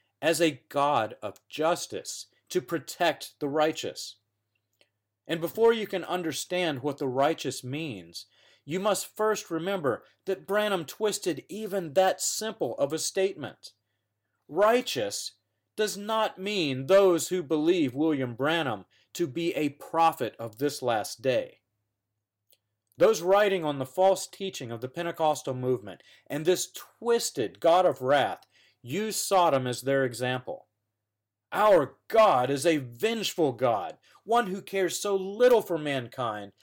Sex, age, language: male, 40-59, English